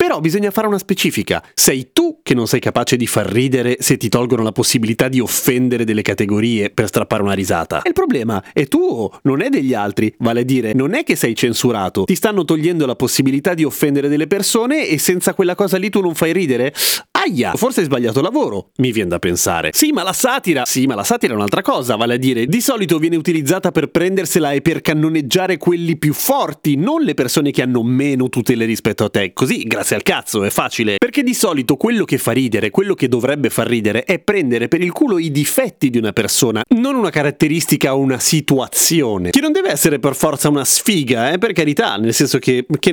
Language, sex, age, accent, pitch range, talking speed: Italian, male, 30-49, native, 125-195 Hz, 215 wpm